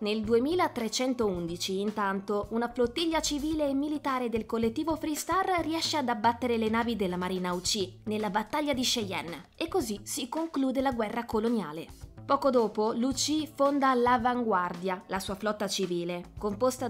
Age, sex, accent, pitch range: 20-39, female, native, 205-285 Hz